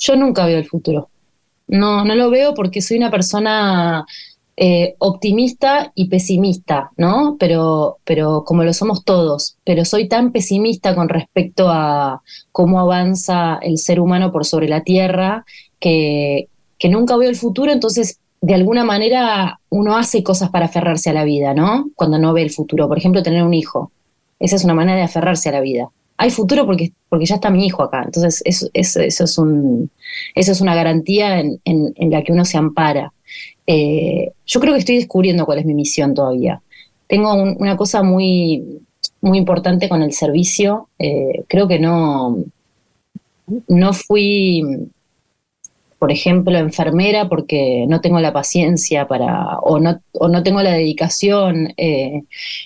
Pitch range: 160-200 Hz